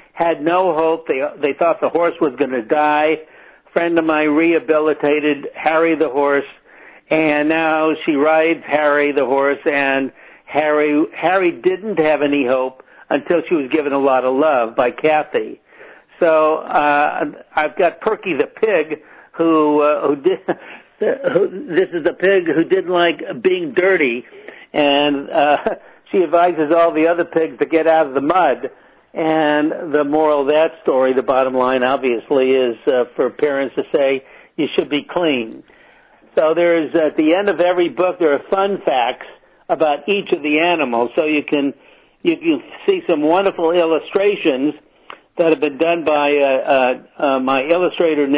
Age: 60-79